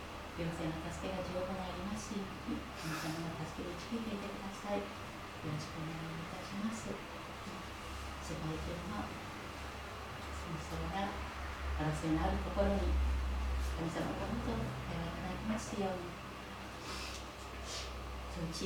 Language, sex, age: Japanese, female, 40-59